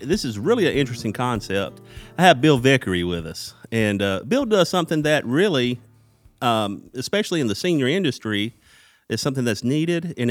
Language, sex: English, male